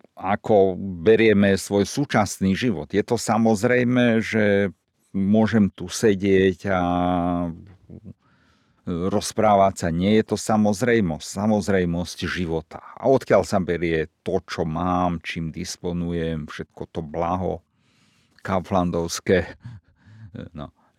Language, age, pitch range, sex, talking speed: Slovak, 50-69, 90-110 Hz, male, 100 wpm